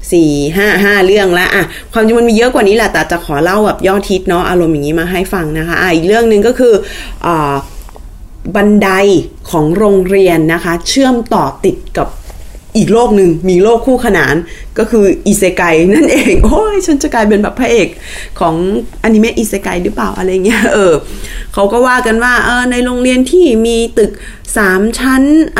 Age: 20-39